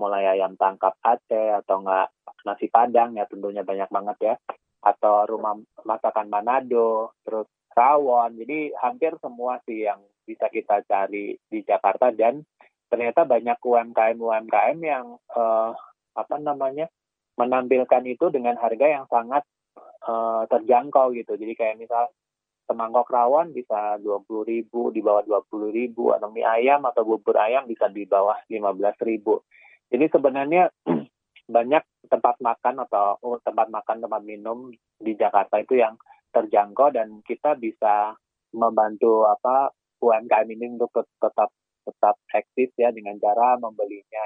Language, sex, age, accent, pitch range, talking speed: Indonesian, male, 20-39, native, 105-120 Hz, 130 wpm